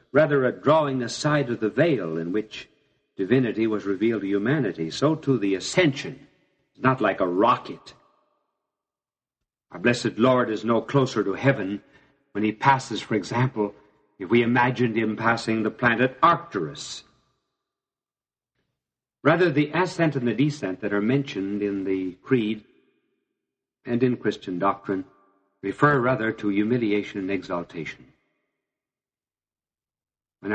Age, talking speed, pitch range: 60-79, 135 wpm, 105-140 Hz